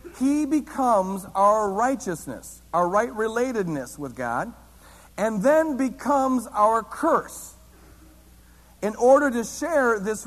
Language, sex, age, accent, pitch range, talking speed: English, male, 50-69, American, 175-245 Hz, 105 wpm